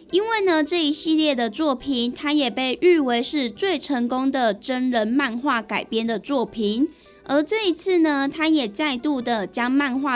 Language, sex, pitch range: Chinese, female, 235-315 Hz